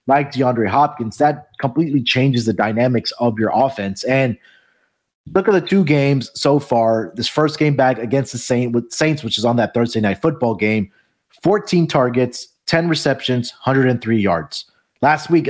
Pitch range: 120-150 Hz